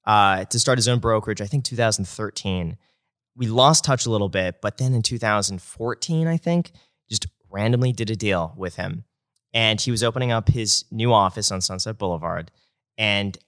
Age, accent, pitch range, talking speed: 30-49, American, 100-120 Hz, 180 wpm